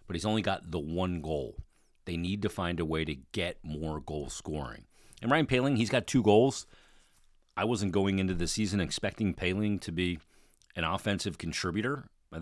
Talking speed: 190 wpm